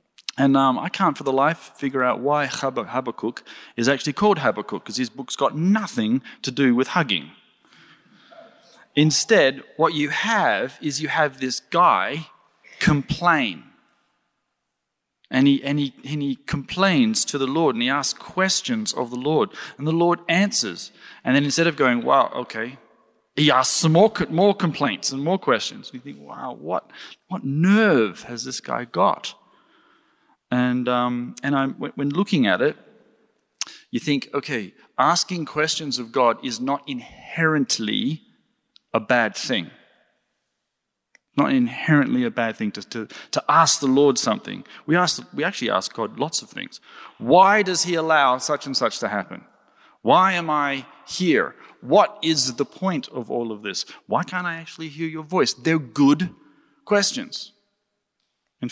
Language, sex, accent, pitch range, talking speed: English, male, Australian, 135-185 Hz, 160 wpm